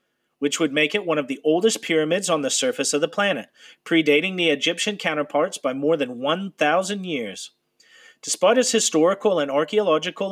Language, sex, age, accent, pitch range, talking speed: English, male, 40-59, American, 145-215 Hz, 170 wpm